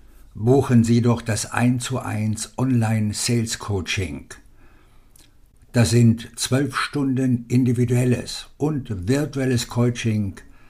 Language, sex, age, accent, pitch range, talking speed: German, male, 60-79, German, 105-125 Hz, 90 wpm